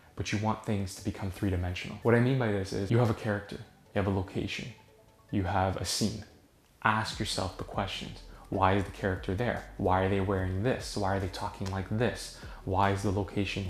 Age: 20-39